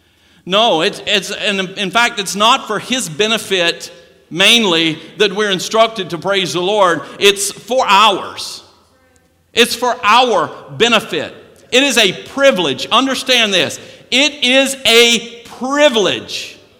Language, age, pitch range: English, 50-69, 195-255 Hz